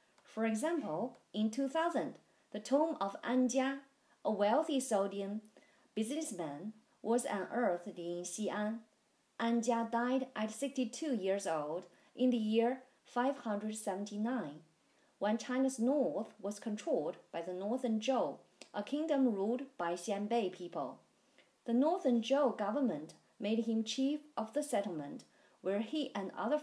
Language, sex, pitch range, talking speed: English, female, 205-270 Hz, 125 wpm